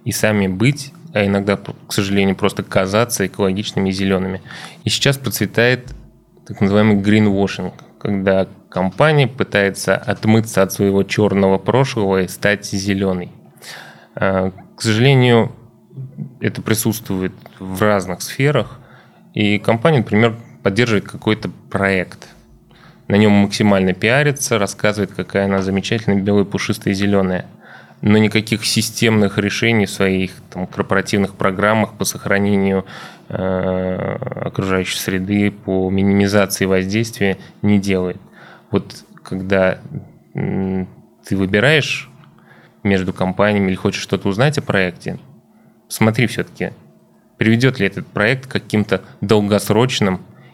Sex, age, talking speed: male, 20-39, 110 wpm